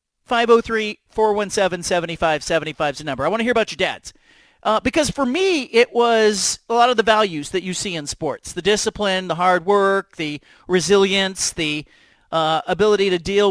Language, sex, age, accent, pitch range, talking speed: English, male, 40-59, American, 170-210 Hz, 215 wpm